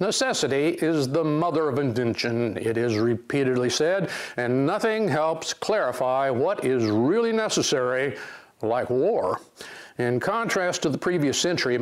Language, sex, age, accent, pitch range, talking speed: English, male, 50-69, American, 130-170 Hz, 130 wpm